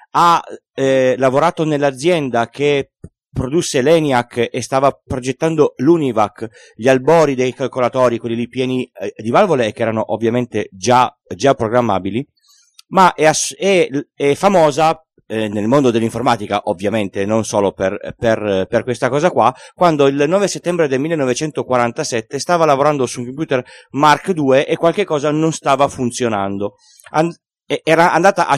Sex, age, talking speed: male, 30-49, 145 wpm